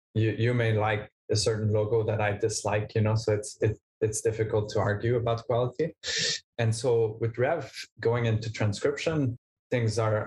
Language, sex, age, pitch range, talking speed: English, male, 20-39, 110-120 Hz, 175 wpm